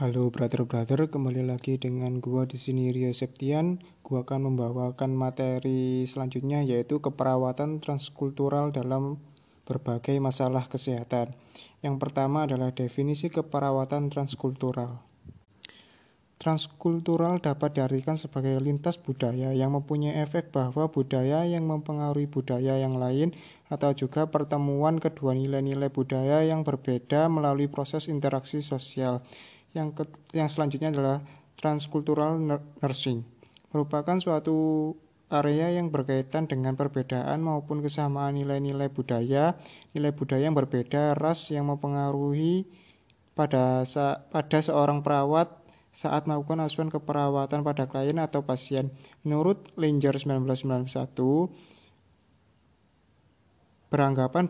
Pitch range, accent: 130-155 Hz, native